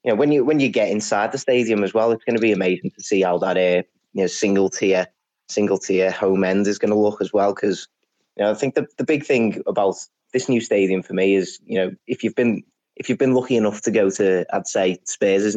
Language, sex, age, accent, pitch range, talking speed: English, male, 20-39, British, 95-110 Hz, 260 wpm